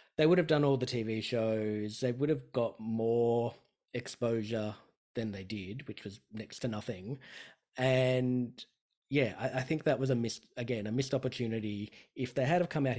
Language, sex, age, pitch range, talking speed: English, male, 20-39, 110-140 Hz, 190 wpm